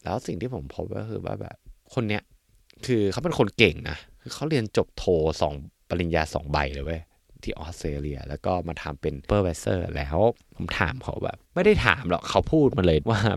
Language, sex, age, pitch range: Thai, male, 20-39, 80-110 Hz